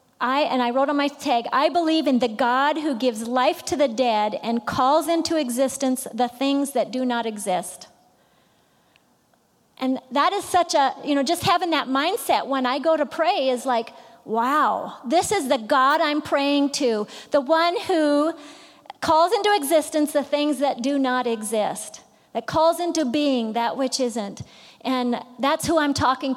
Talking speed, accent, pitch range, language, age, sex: 180 wpm, American, 270-360 Hz, English, 40-59, female